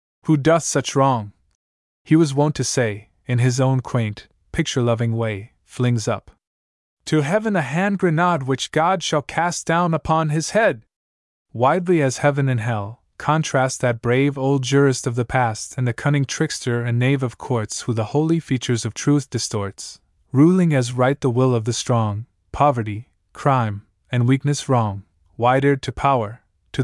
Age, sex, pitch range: 20-39, male, 110-140 Hz